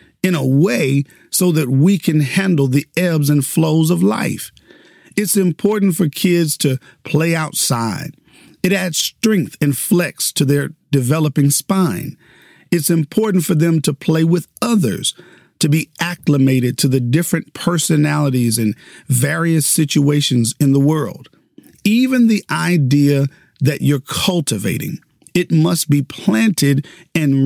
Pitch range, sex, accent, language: 140-175 Hz, male, American, English